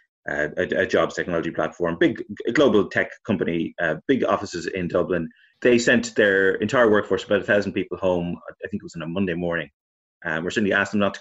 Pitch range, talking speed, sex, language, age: 90-110 Hz, 210 wpm, male, English, 30-49